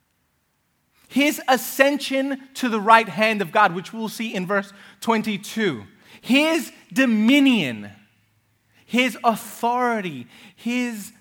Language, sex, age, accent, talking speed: English, male, 30-49, American, 100 wpm